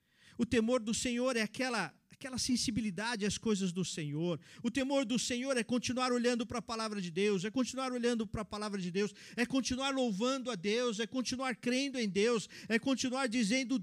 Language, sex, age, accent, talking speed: Portuguese, male, 50-69, Brazilian, 195 wpm